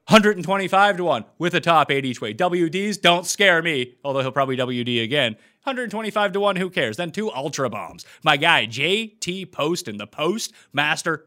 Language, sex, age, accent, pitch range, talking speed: English, male, 30-49, American, 125-180 Hz, 185 wpm